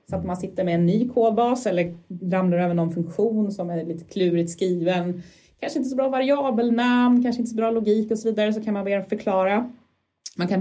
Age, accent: 30-49, native